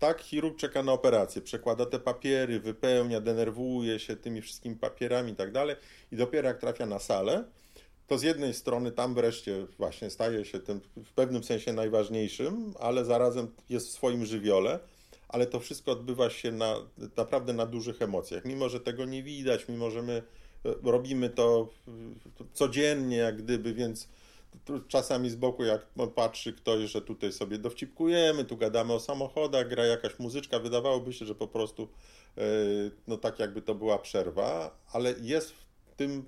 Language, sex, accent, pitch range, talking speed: Polish, male, native, 115-130 Hz, 165 wpm